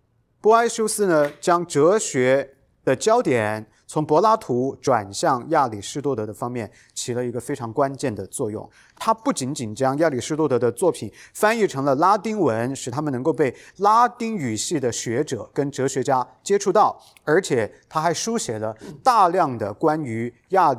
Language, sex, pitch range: English, male, 115-175 Hz